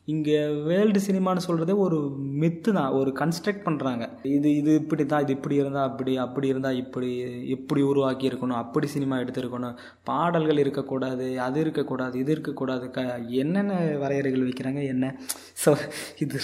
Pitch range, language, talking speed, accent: 135-165 Hz, Tamil, 140 wpm, native